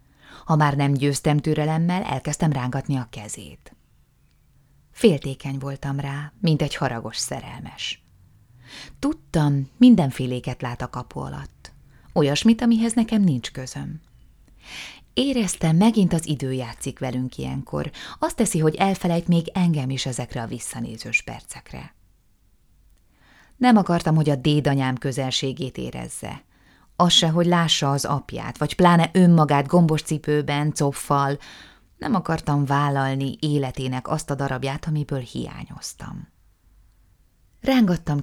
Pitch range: 130-165 Hz